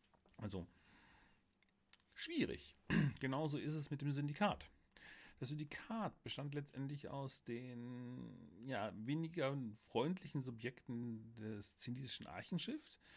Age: 40-59